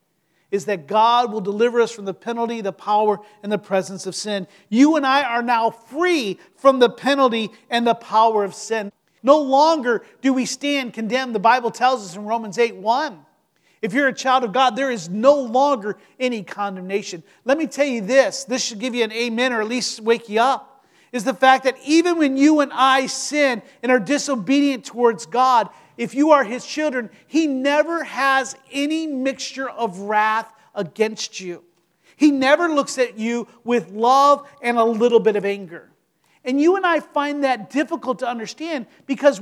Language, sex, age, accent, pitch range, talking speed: English, male, 40-59, American, 215-275 Hz, 190 wpm